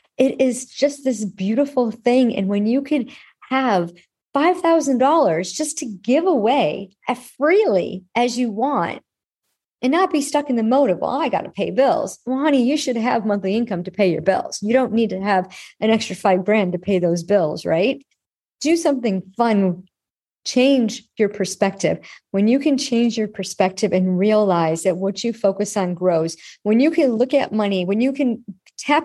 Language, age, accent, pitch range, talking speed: English, 40-59, American, 195-265 Hz, 185 wpm